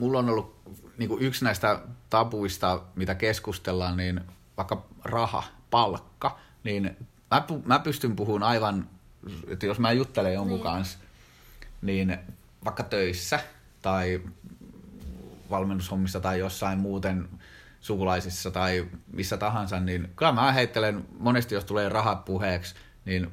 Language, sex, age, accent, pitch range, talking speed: Finnish, male, 30-49, native, 90-120 Hz, 125 wpm